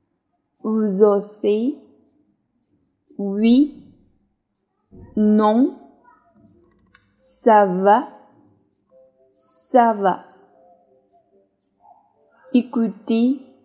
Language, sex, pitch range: Chinese, female, 200-250 Hz